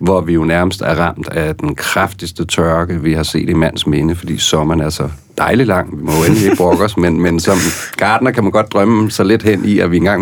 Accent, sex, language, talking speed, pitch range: native, male, Danish, 255 wpm, 85-110 Hz